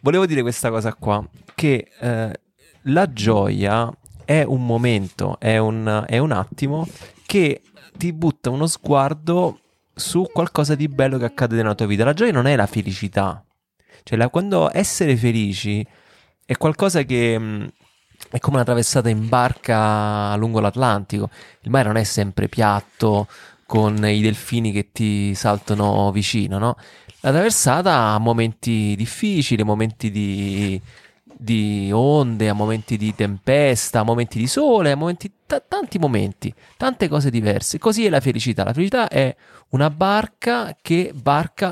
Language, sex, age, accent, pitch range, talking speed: Italian, male, 20-39, native, 110-170 Hz, 145 wpm